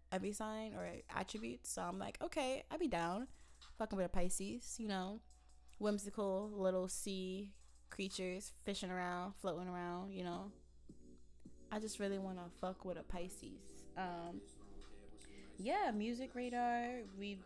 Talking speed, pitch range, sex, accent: 140 wpm, 180-220 Hz, female, American